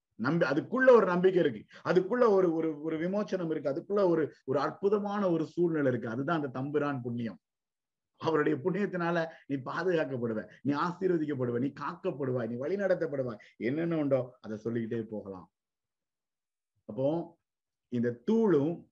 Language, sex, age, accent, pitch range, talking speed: Tamil, male, 50-69, native, 120-175 Hz, 125 wpm